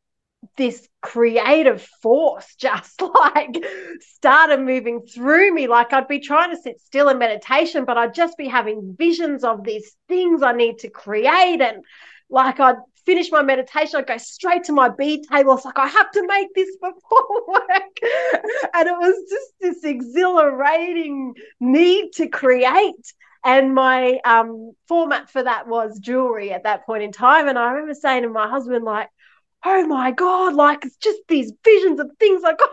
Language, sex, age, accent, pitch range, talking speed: English, female, 30-49, Australian, 235-345 Hz, 175 wpm